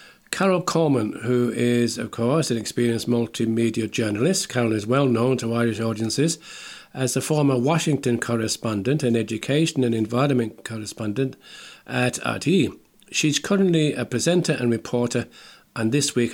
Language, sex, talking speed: English, male, 140 wpm